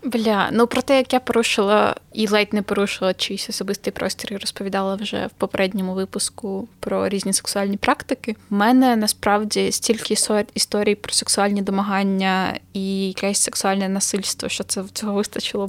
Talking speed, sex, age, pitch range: 155 wpm, female, 10-29, 195-225 Hz